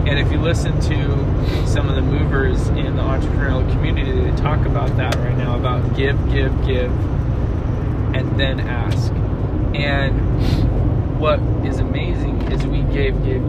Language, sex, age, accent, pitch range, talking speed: English, male, 20-39, American, 125-135 Hz, 150 wpm